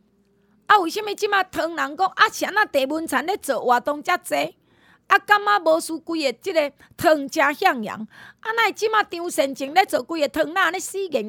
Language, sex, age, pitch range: Chinese, female, 30-49, 255-390 Hz